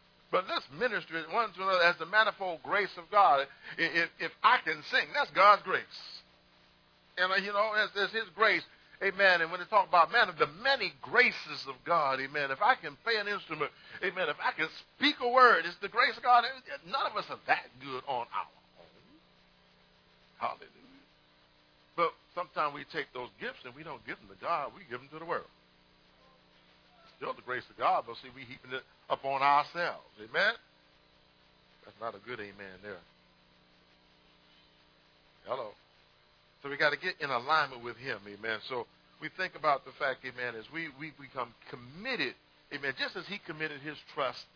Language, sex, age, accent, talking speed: English, male, 50-69, American, 185 wpm